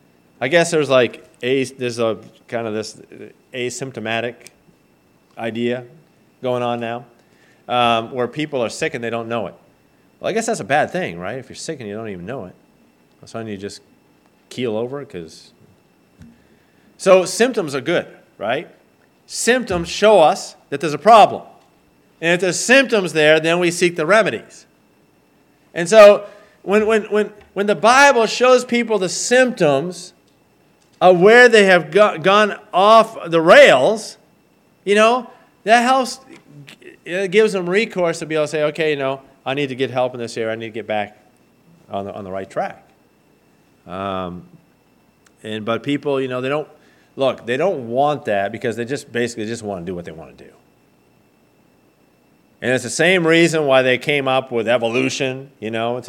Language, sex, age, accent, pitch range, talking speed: English, male, 40-59, American, 115-185 Hz, 180 wpm